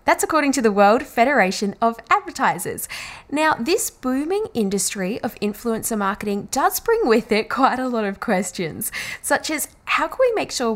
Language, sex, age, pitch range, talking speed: English, female, 10-29, 200-305 Hz, 175 wpm